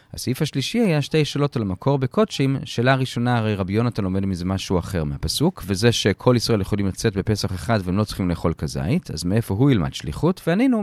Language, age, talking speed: Hebrew, 30-49, 200 wpm